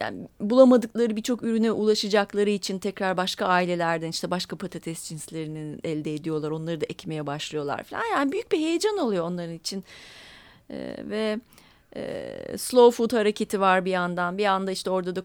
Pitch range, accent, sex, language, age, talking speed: 165-215 Hz, native, female, Turkish, 30-49, 160 wpm